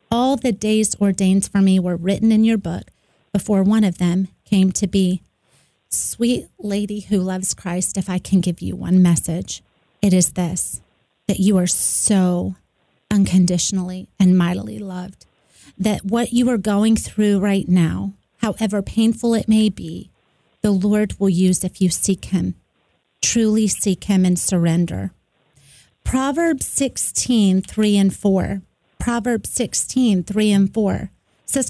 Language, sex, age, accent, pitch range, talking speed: English, female, 30-49, American, 185-215 Hz, 150 wpm